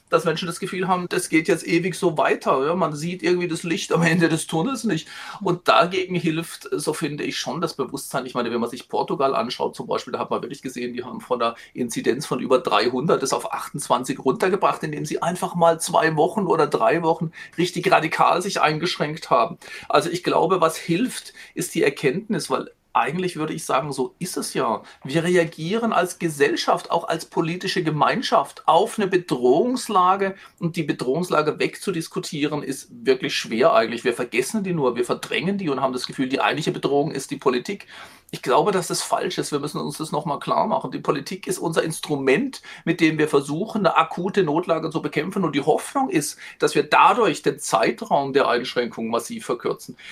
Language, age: German, 40-59